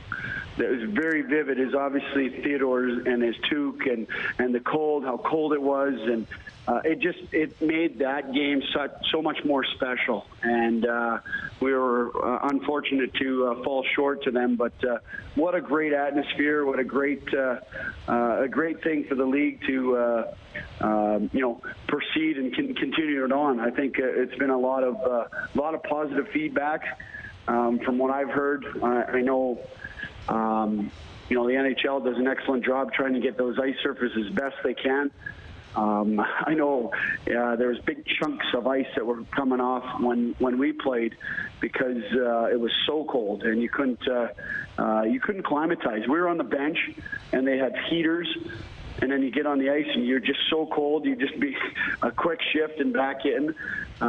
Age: 40-59